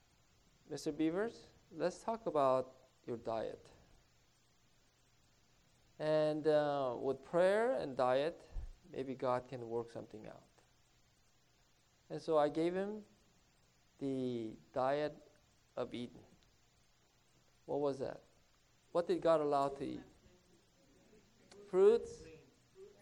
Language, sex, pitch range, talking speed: English, male, 125-165 Hz, 100 wpm